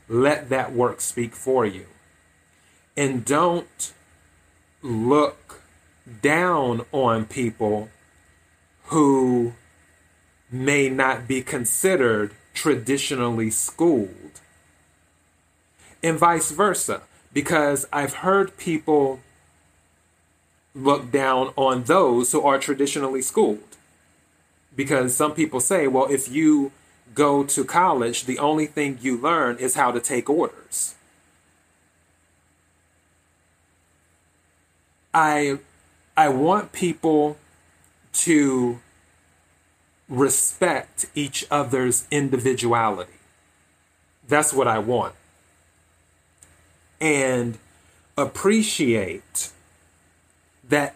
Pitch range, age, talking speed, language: 85-140 Hz, 30-49, 80 wpm, English